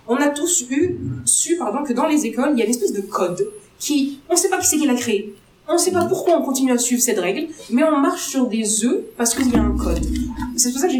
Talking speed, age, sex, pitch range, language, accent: 295 wpm, 30-49, female, 210-300 Hz, French, French